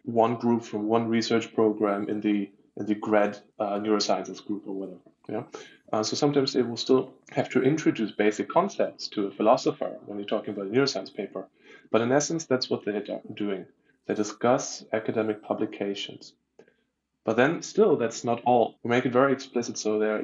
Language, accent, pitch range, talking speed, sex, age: English, German, 105-120 Hz, 190 wpm, male, 20-39